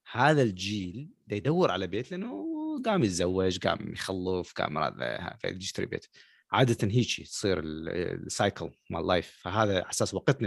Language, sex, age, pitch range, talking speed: Arabic, male, 30-49, 100-160 Hz, 125 wpm